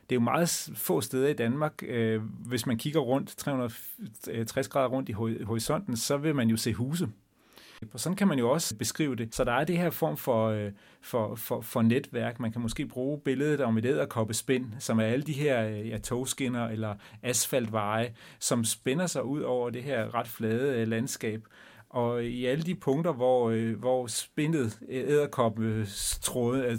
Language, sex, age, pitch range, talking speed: Danish, male, 30-49, 115-140 Hz, 170 wpm